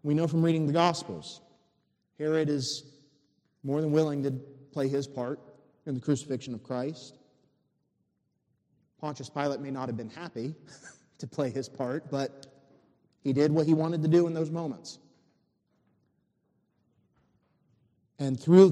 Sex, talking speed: male, 140 wpm